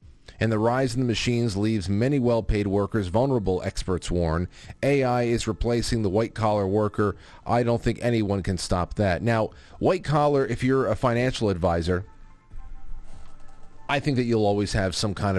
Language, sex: English, male